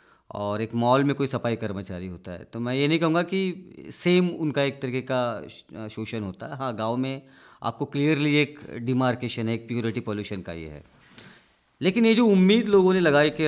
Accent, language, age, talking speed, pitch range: native, Hindi, 30-49, 200 wpm, 110-160 Hz